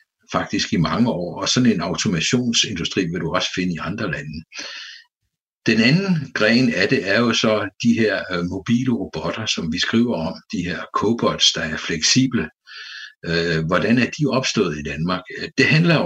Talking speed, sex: 170 wpm, male